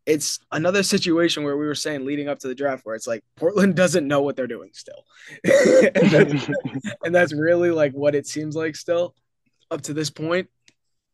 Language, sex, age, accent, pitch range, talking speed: English, male, 20-39, American, 120-150 Hz, 190 wpm